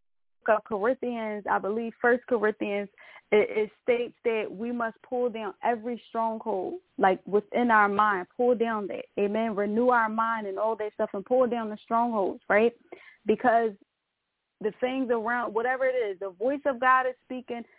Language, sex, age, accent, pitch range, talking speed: English, female, 20-39, American, 215-260 Hz, 170 wpm